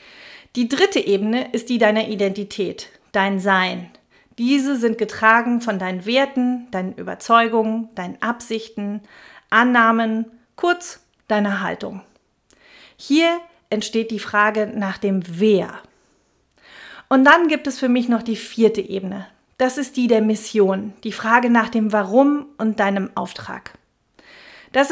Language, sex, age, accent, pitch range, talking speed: German, female, 40-59, German, 210-250 Hz, 130 wpm